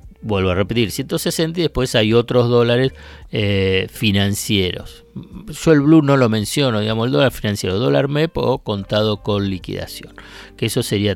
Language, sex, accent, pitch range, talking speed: Spanish, male, Argentinian, 100-140 Hz, 165 wpm